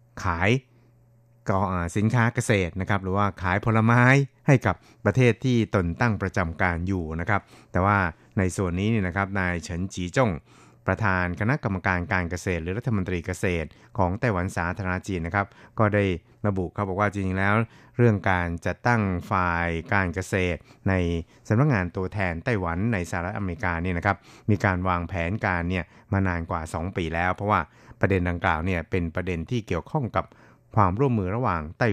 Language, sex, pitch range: Thai, male, 90-115 Hz